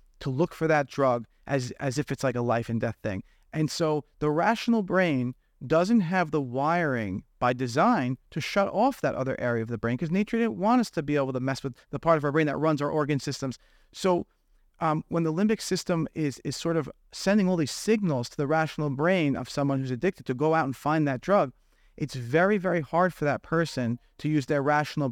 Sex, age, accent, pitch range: male, 30-49, American, 130-165 Hz